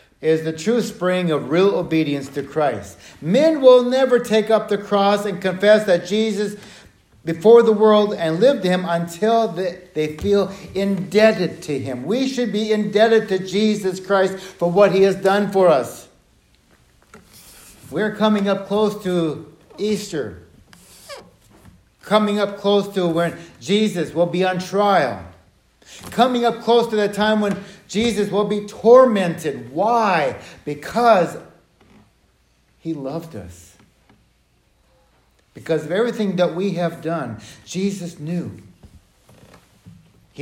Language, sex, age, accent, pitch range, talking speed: English, male, 60-79, American, 160-215 Hz, 130 wpm